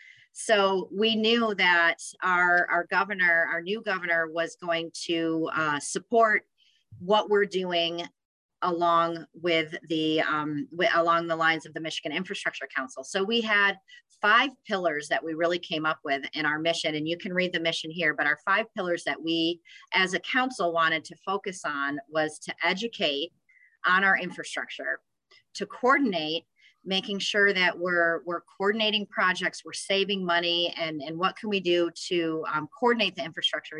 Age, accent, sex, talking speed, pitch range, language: 30-49, American, female, 165 wpm, 165-200 Hz, English